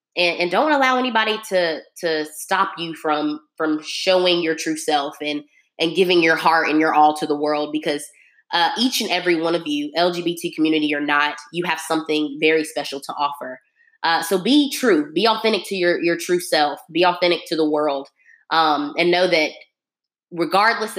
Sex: female